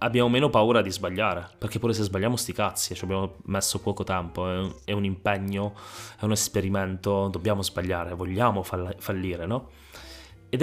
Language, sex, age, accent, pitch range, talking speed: Italian, male, 20-39, native, 95-115 Hz, 180 wpm